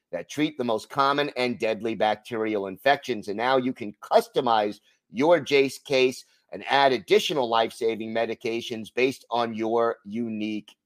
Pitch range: 120-145 Hz